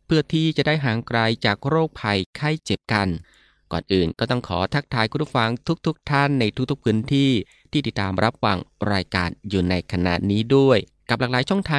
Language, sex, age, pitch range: Thai, male, 20-39, 100-135 Hz